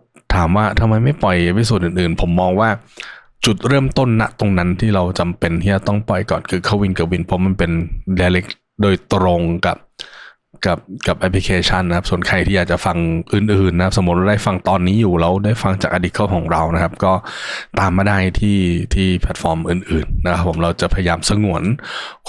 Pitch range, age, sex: 85-105 Hz, 20-39, male